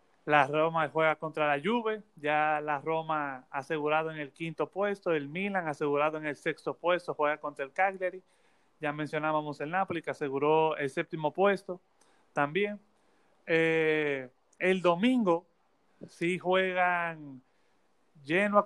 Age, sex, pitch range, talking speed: 30-49, male, 150-180 Hz, 135 wpm